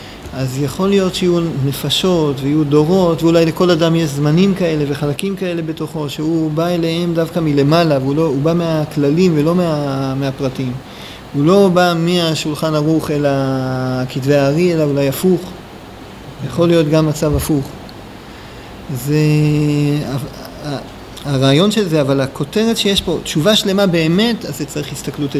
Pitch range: 140-175 Hz